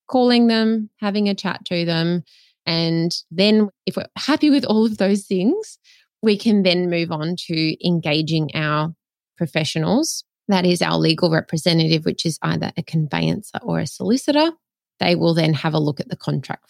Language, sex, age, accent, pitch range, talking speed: English, female, 20-39, Australian, 155-200 Hz, 175 wpm